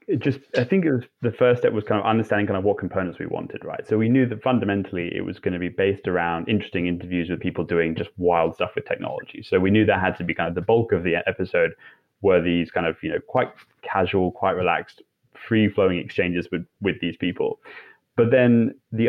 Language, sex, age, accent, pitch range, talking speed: English, male, 20-39, British, 90-110 Hz, 235 wpm